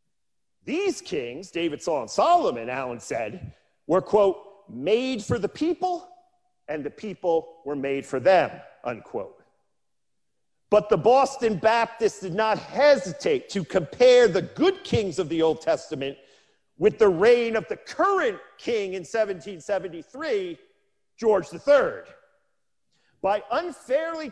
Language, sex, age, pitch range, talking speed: English, male, 40-59, 185-285 Hz, 125 wpm